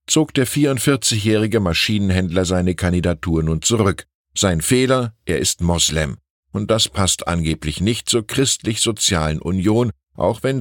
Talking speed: 130 wpm